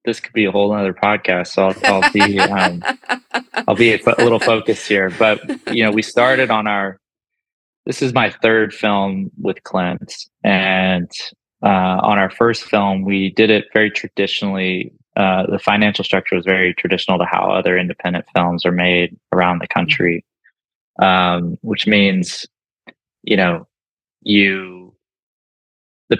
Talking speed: 160 wpm